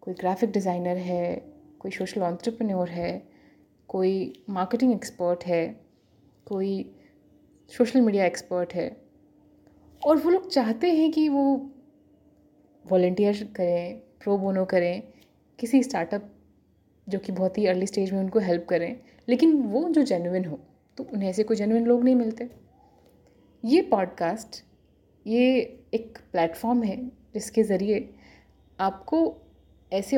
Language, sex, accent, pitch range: Hindi, female, native, 185-245 Hz